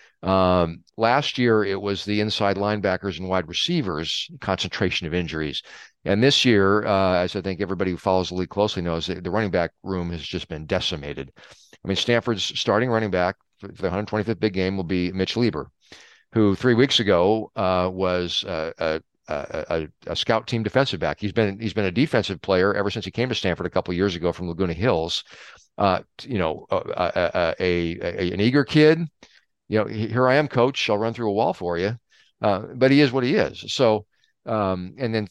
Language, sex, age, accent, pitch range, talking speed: English, male, 40-59, American, 90-115 Hz, 205 wpm